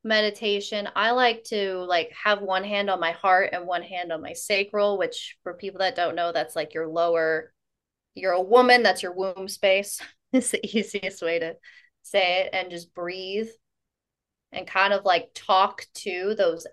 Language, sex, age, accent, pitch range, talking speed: English, female, 20-39, American, 185-215 Hz, 185 wpm